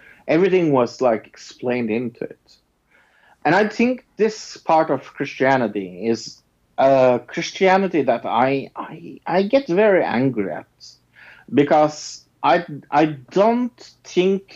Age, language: 50-69, English